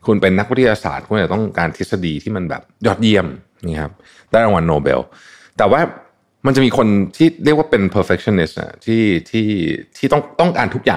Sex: male